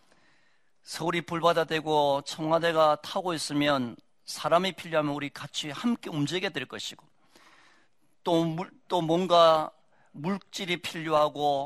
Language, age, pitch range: Korean, 40-59, 145-190 Hz